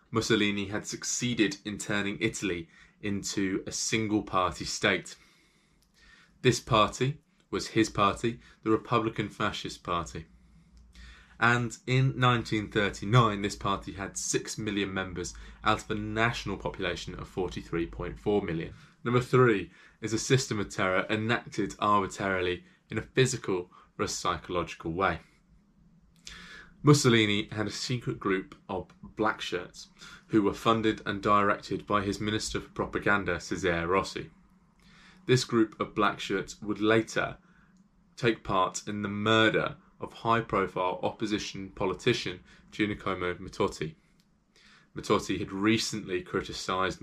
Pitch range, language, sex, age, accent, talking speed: 100-125 Hz, English, male, 20-39, British, 115 wpm